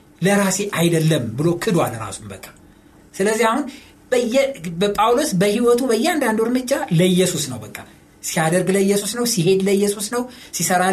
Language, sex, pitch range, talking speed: Amharic, male, 155-235 Hz, 120 wpm